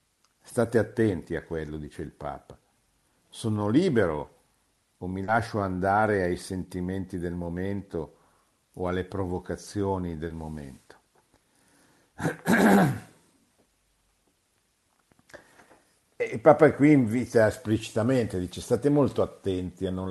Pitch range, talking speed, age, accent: 90-115 Hz, 100 wpm, 60-79, native